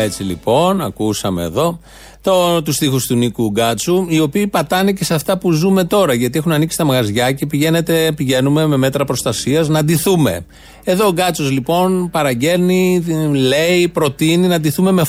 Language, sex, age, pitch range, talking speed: Greek, male, 30-49, 125-170 Hz, 160 wpm